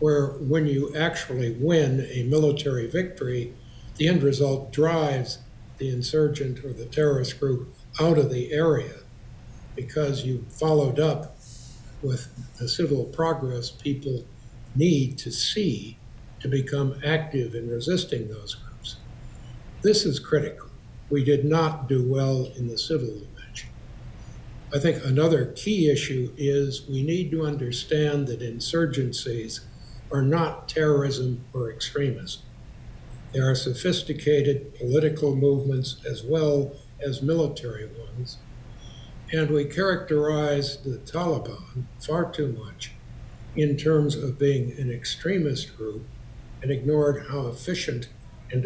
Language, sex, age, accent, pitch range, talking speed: English, male, 60-79, American, 120-150 Hz, 125 wpm